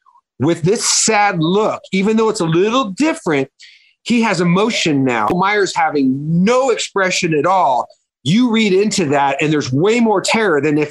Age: 40-59